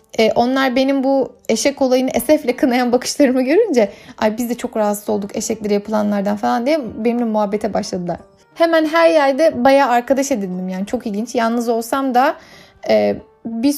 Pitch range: 235-290 Hz